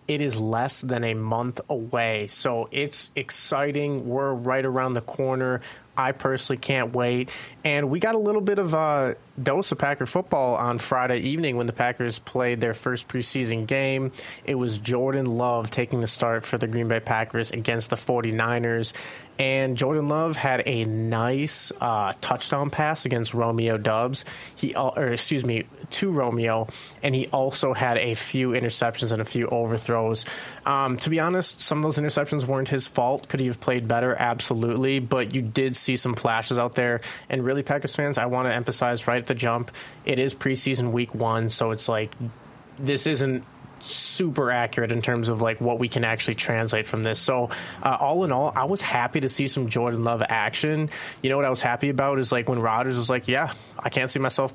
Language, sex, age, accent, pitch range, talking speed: English, male, 20-39, American, 120-135 Hz, 195 wpm